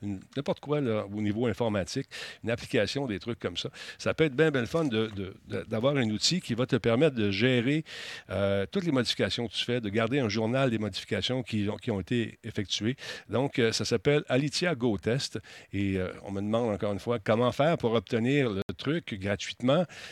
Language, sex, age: French, male, 50-69